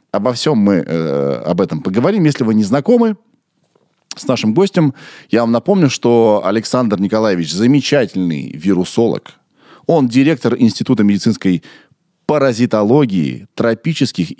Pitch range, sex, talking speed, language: 95-155 Hz, male, 115 wpm, Russian